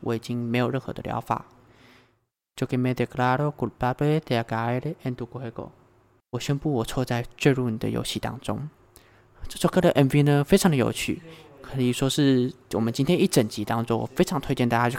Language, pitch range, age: Chinese, 115-140 Hz, 20-39